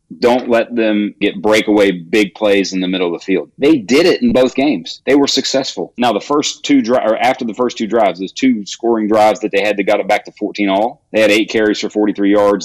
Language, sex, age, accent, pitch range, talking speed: English, male, 40-59, American, 105-125 Hz, 255 wpm